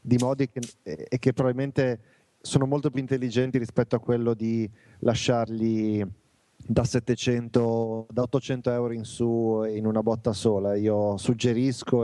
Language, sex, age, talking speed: Italian, male, 30-49, 140 wpm